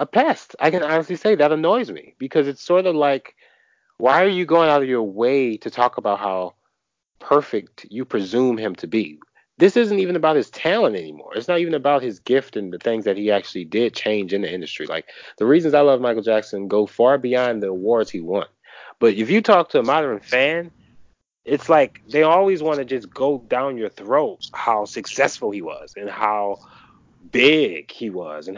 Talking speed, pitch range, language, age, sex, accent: 210 wpm, 110-175 Hz, English, 30-49, male, American